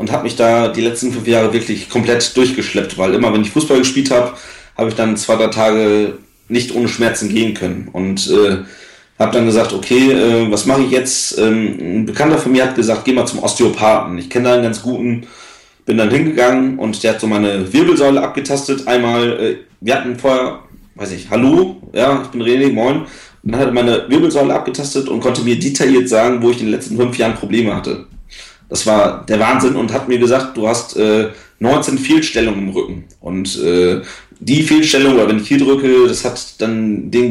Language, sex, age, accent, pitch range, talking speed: German, male, 30-49, German, 110-135 Hz, 205 wpm